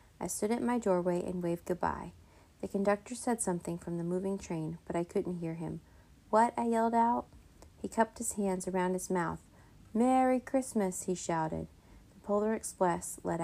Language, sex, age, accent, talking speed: English, female, 30-49, American, 180 wpm